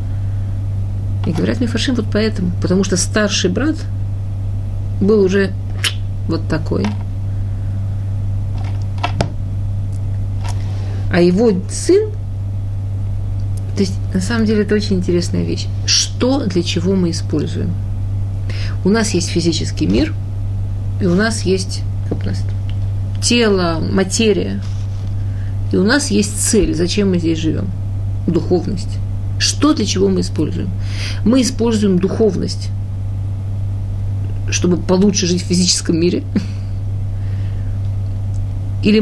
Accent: native